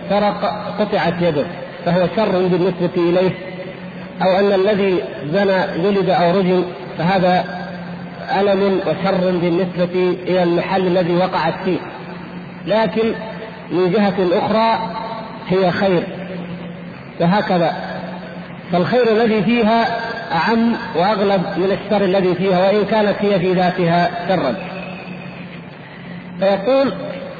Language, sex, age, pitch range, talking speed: Arabic, male, 50-69, 180-210 Hz, 100 wpm